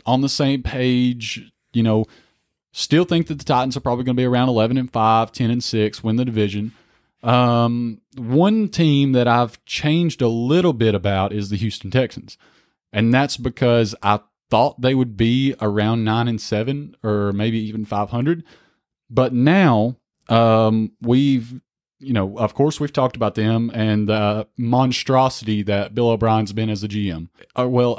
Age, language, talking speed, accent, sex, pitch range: 30-49, English, 170 wpm, American, male, 105-130 Hz